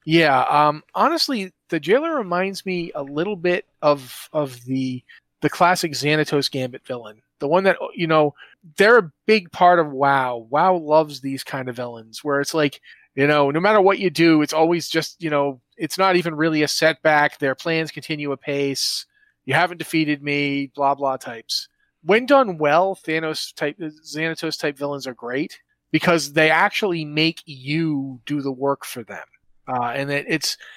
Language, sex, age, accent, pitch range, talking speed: English, male, 30-49, American, 140-170 Hz, 175 wpm